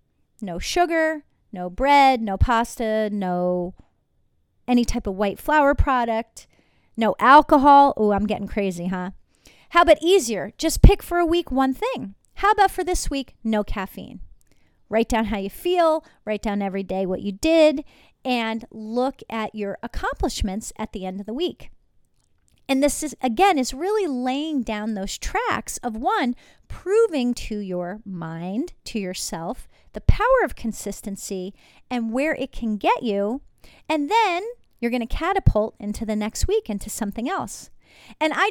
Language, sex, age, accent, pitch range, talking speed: English, female, 30-49, American, 205-285 Hz, 160 wpm